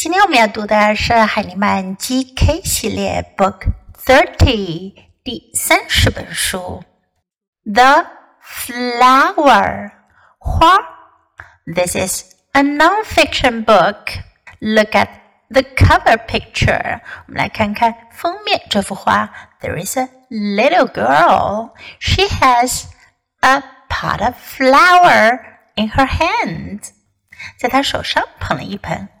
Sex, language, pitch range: female, Chinese, 205-285 Hz